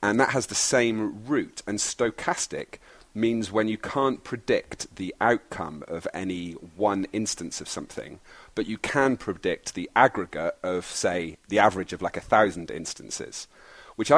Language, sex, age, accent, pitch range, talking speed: English, male, 40-59, British, 90-105 Hz, 155 wpm